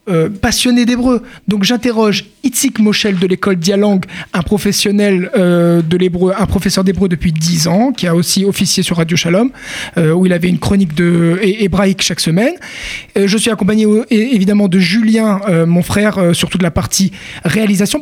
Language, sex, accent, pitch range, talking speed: French, male, French, 180-225 Hz, 185 wpm